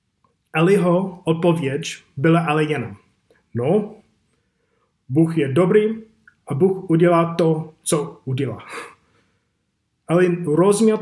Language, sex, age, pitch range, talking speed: Czech, male, 30-49, 145-175 Hz, 95 wpm